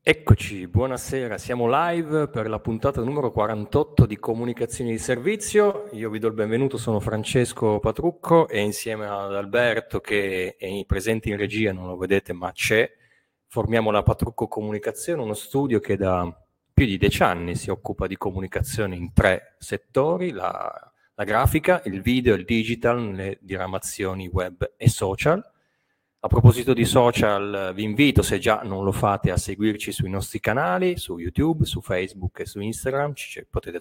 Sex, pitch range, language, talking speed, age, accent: male, 100-135 Hz, Italian, 160 wpm, 30-49, native